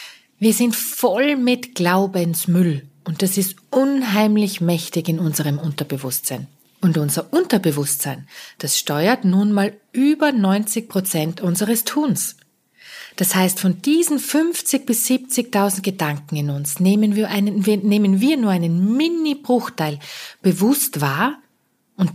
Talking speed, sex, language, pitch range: 115 wpm, female, German, 180-250 Hz